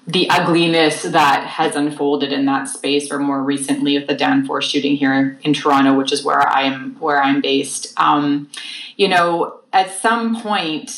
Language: English